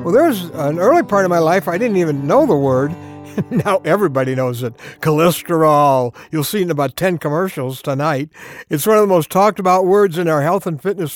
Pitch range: 150-220 Hz